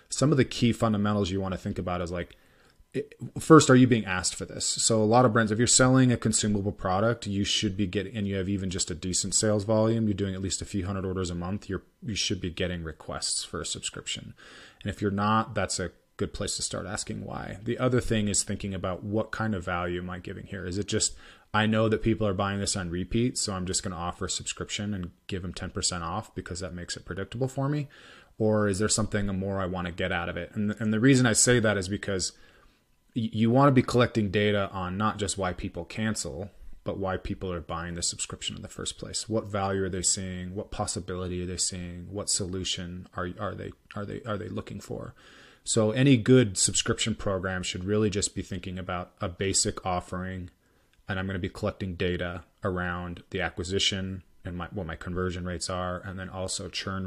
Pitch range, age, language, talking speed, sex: 90-110 Hz, 30-49, English, 220 wpm, male